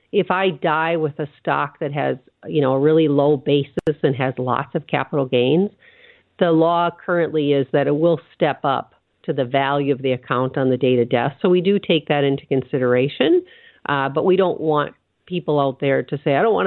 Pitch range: 145-185 Hz